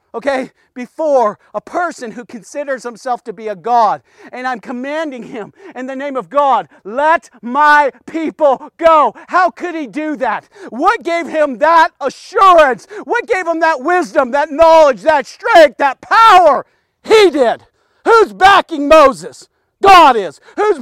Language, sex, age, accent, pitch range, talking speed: English, male, 50-69, American, 275-365 Hz, 155 wpm